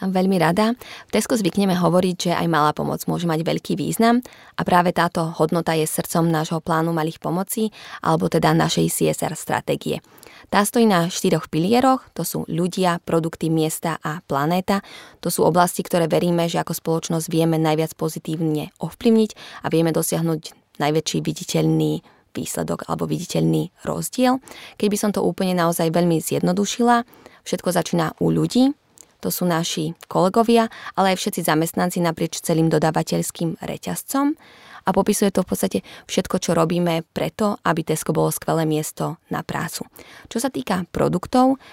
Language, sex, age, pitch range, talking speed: Slovak, female, 20-39, 160-195 Hz, 150 wpm